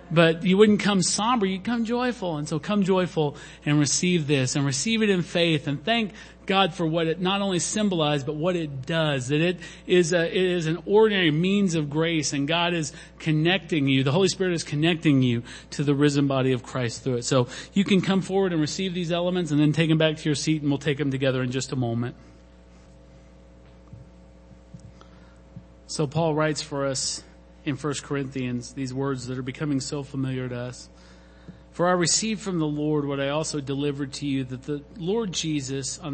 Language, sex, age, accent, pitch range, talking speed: English, male, 40-59, American, 130-170 Hz, 200 wpm